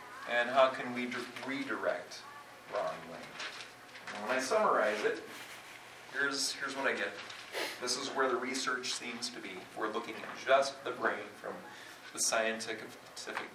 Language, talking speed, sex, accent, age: English, 150 wpm, male, American, 40-59